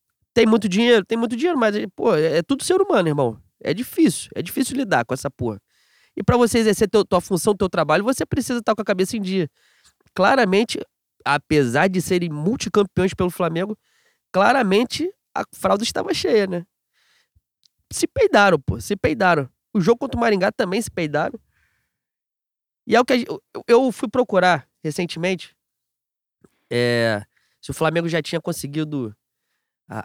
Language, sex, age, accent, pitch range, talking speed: Portuguese, male, 20-39, Brazilian, 160-240 Hz, 165 wpm